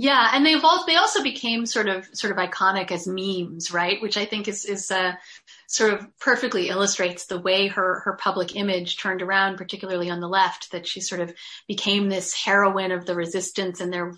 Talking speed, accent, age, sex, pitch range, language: 205 wpm, American, 30-49, female, 190-225 Hz, English